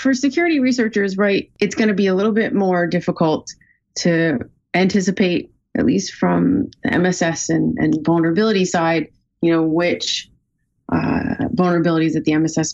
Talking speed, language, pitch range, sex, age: 150 wpm, English, 160-195 Hz, female, 30-49